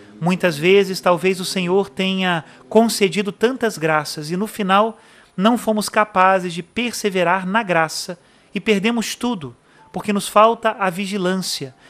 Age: 30-49